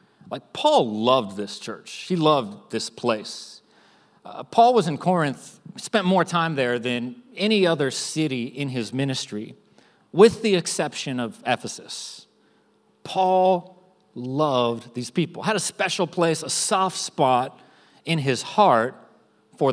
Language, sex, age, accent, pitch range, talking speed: English, male, 40-59, American, 150-210 Hz, 135 wpm